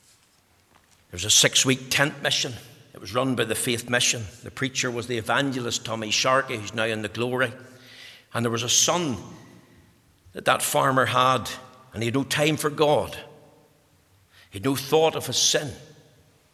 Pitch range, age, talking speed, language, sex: 120-180 Hz, 60-79, 175 wpm, English, male